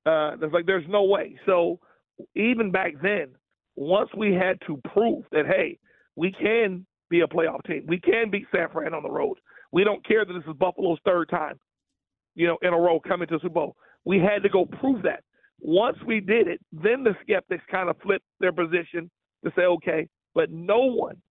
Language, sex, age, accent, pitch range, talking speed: English, male, 40-59, American, 170-200 Hz, 205 wpm